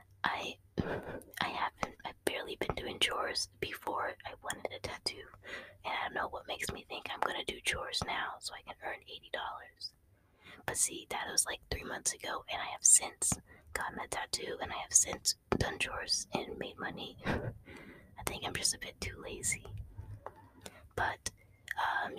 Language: English